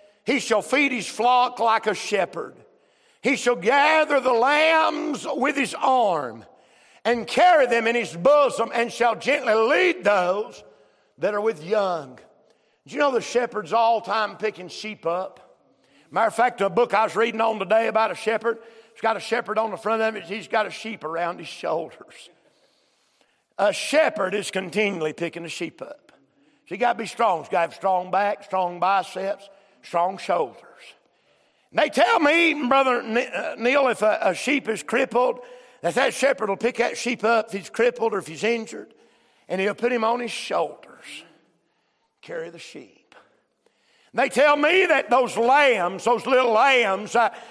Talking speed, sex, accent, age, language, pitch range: 180 wpm, male, American, 50-69, English, 205-250 Hz